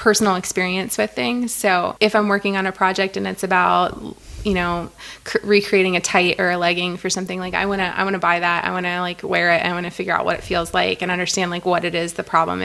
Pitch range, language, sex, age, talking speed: 170-190 Hz, English, female, 20-39, 265 wpm